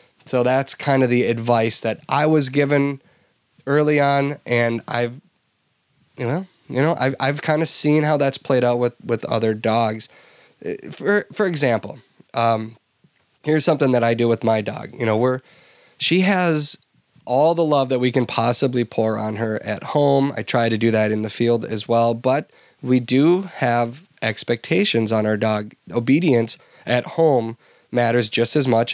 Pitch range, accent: 115-145 Hz, American